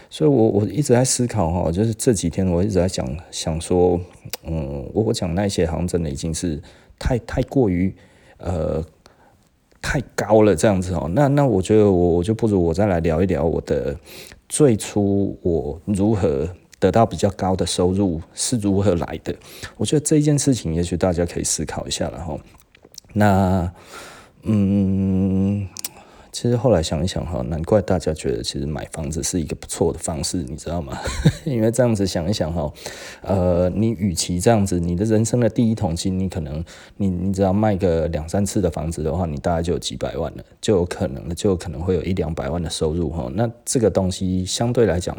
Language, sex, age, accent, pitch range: Chinese, male, 30-49, native, 85-105 Hz